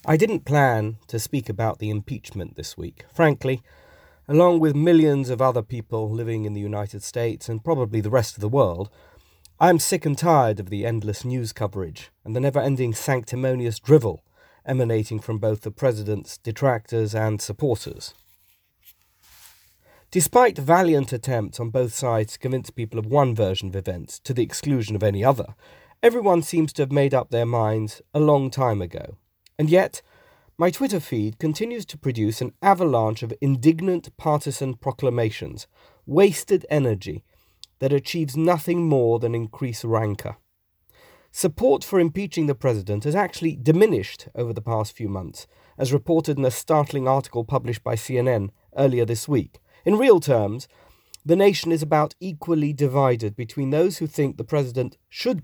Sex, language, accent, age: male, English, British, 40-59